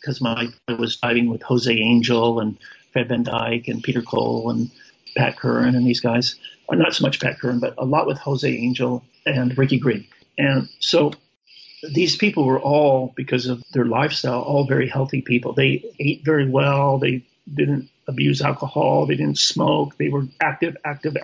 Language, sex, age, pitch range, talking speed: English, male, 50-69, 120-140 Hz, 185 wpm